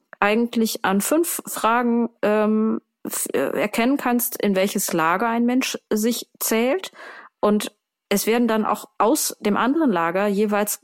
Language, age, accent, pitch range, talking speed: German, 30-49, German, 185-230 Hz, 140 wpm